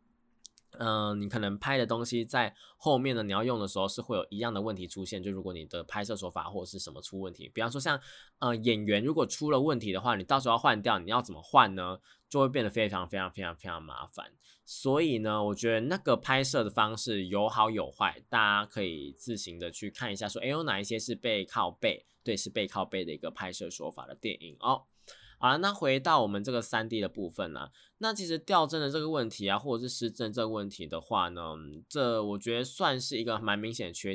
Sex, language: male, Chinese